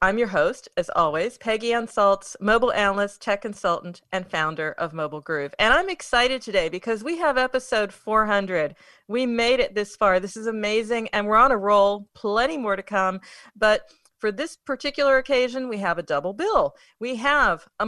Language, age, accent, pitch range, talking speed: English, 40-59, American, 185-250 Hz, 185 wpm